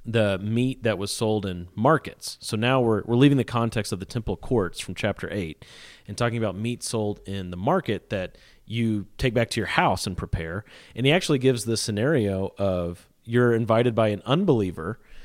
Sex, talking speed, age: male, 195 wpm, 30-49